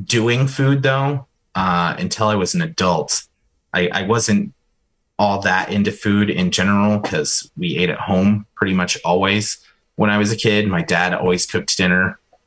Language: English